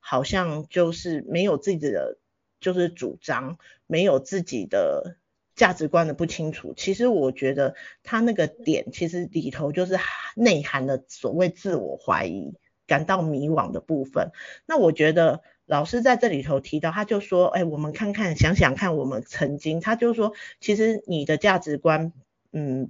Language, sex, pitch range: Chinese, female, 150-190 Hz